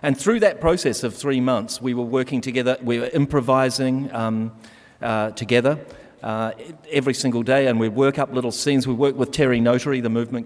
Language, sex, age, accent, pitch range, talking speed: English, male, 40-59, Australian, 110-135 Hz, 195 wpm